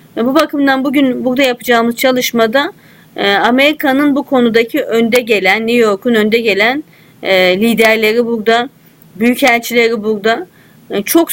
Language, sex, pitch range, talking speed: Turkish, female, 215-255 Hz, 110 wpm